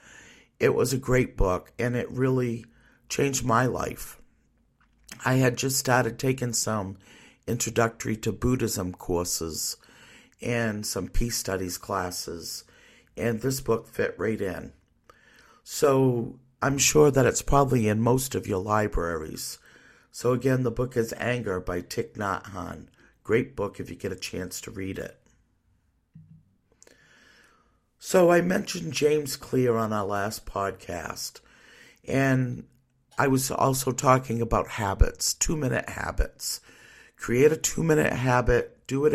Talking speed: 135 wpm